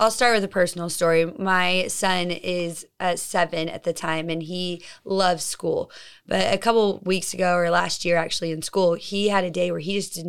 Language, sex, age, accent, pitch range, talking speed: English, female, 20-39, American, 165-190 Hz, 210 wpm